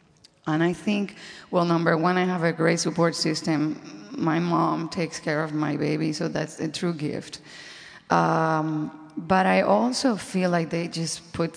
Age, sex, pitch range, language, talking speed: 30-49, female, 165-200 Hz, English, 170 wpm